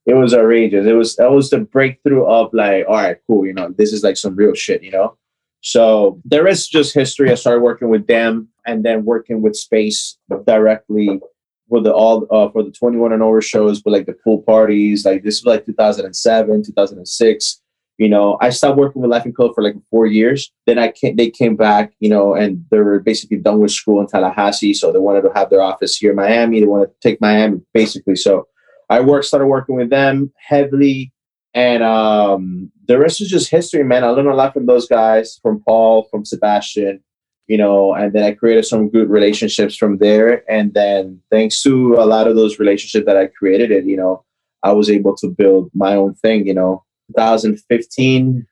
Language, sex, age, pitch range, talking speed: English, male, 20-39, 105-120 Hz, 210 wpm